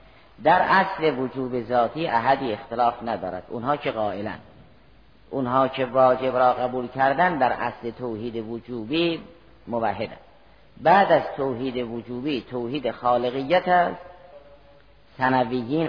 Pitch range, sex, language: 120-150 Hz, female, Persian